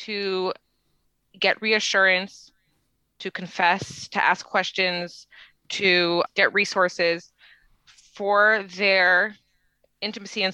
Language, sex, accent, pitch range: English, female, American, 190-245 Hz